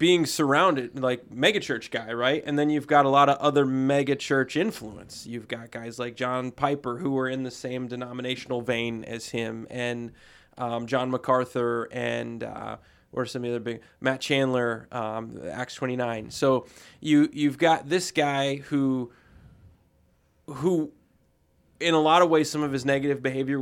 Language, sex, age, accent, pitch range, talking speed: English, male, 20-39, American, 120-145 Hz, 170 wpm